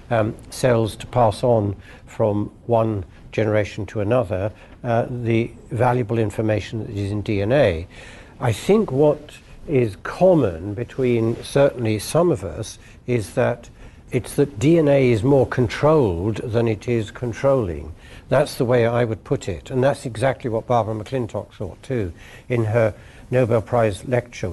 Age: 60-79